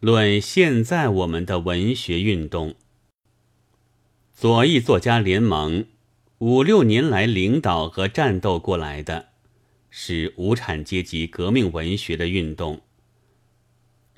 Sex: male